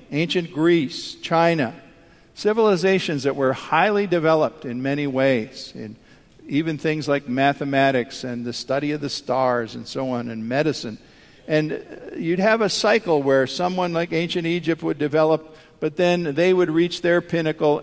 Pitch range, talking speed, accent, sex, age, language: 125-160 Hz, 155 wpm, American, male, 50-69, English